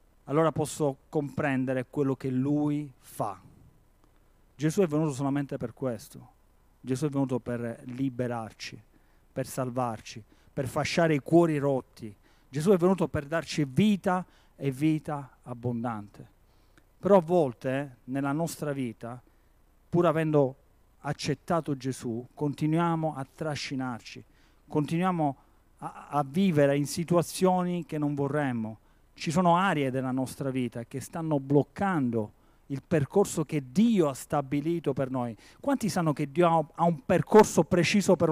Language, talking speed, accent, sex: Italian, 130 wpm, native, male